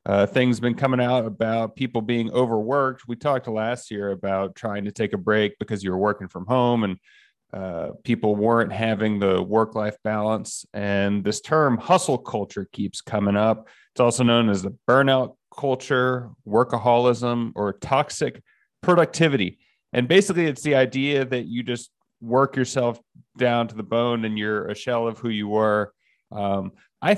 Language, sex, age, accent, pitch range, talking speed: English, male, 30-49, American, 105-130 Hz, 170 wpm